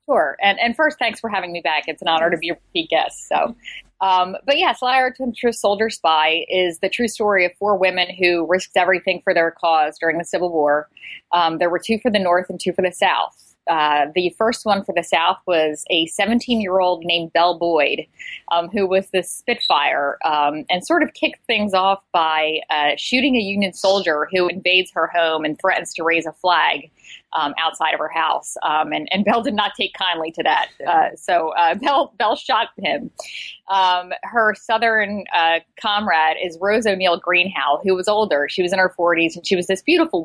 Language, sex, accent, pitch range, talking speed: English, female, American, 160-195 Hz, 210 wpm